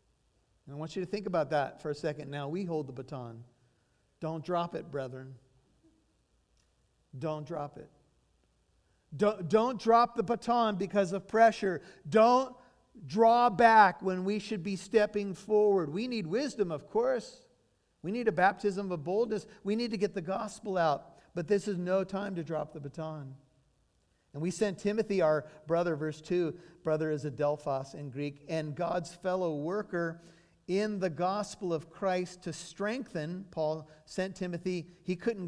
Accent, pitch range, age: American, 155-205 Hz, 50-69